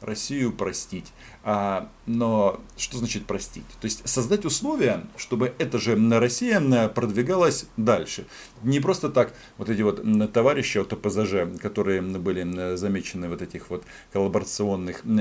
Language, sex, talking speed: Russian, male, 130 wpm